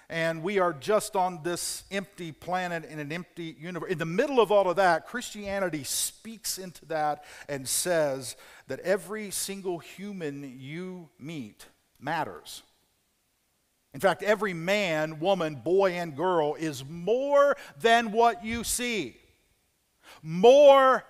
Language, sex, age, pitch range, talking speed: English, male, 50-69, 175-225 Hz, 135 wpm